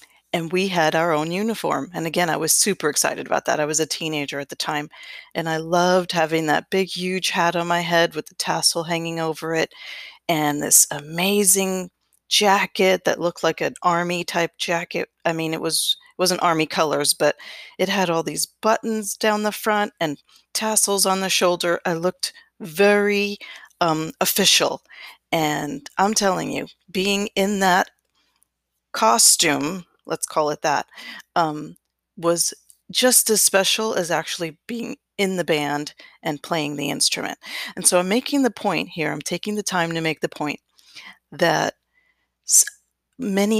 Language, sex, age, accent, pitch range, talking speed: English, female, 40-59, American, 160-200 Hz, 165 wpm